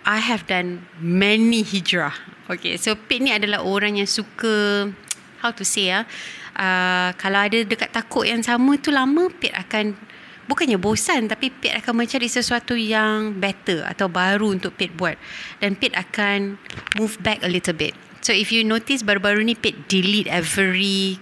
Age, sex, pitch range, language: 30-49, female, 180-225 Hz, English